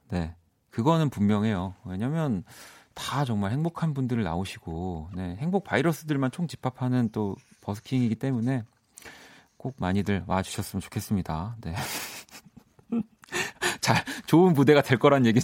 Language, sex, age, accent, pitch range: Korean, male, 40-59, native, 95-135 Hz